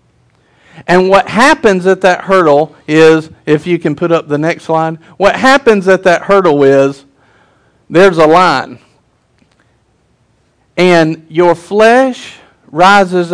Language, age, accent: English, 50-69, American